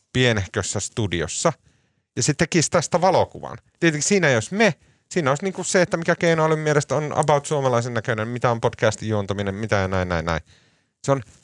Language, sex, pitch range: Finnish, male, 105-150 Hz